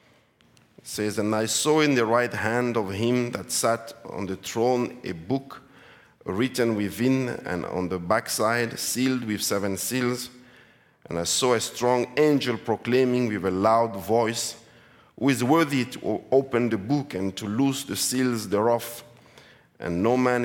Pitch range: 110-135 Hz